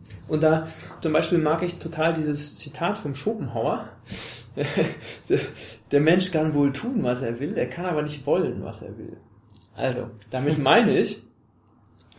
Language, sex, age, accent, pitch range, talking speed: German, male, 30-49, German, 135-180 Hz, 160 wpm